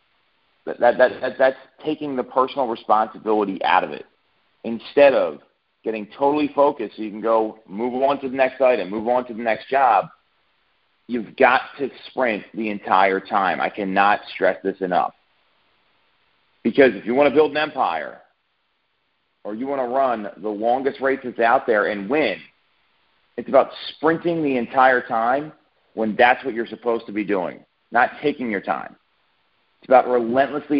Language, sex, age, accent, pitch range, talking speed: English, male, 40-59, American, 110-135 Hz, 170 wpm